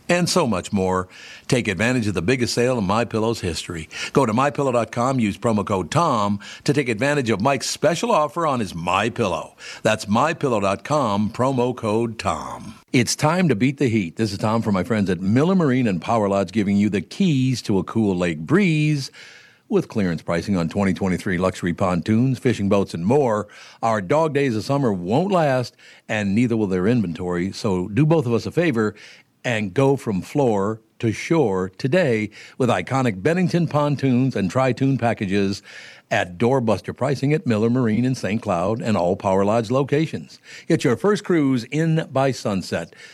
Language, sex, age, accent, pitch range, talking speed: English, male, 60-79, American, 100-135 Hz, 180 wpm